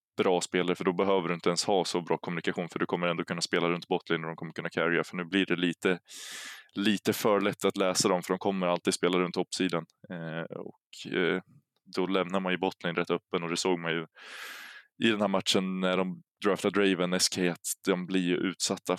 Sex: male